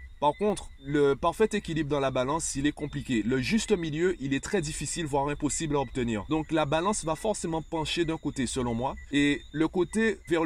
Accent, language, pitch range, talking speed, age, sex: French, French, 120-155 Hz, 205 wpm, 30-49, male